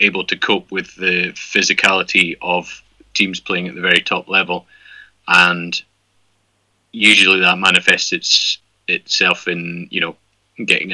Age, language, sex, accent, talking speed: 30-49, English, male, British, 125 wpm